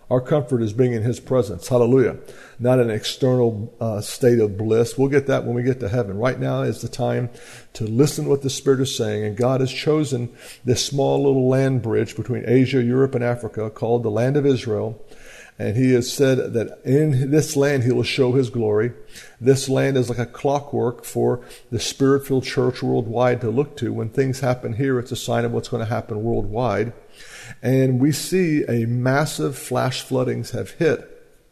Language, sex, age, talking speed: English, male, 50-69, 195 wpm